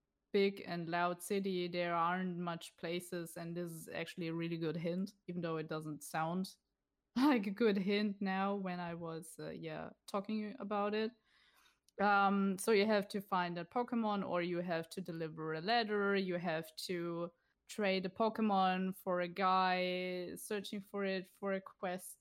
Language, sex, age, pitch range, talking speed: English, female, 20-39, 175-220 Hz, 175 wpm